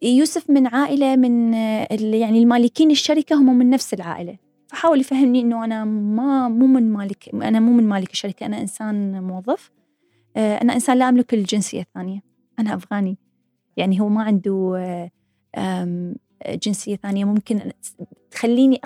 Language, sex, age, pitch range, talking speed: Arabic, female, 20-39, 190-240 Hz, 135 wpm